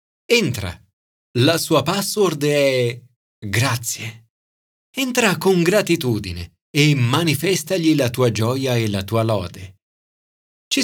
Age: 40-59